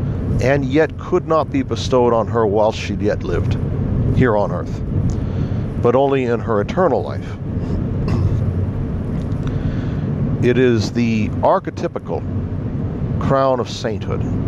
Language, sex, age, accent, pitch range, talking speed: English, male, 60-79, American, 100-120 Hz, 115 wpm